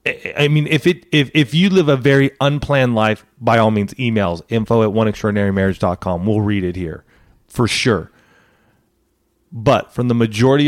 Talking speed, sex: 165 wpm, male